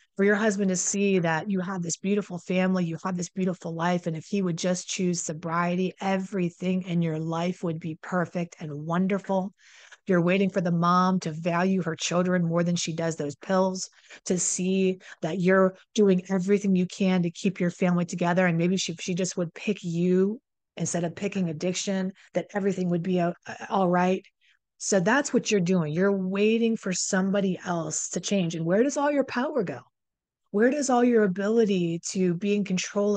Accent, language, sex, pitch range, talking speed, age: American, English, female, 170-200 Hz, 190 wpm, 30-49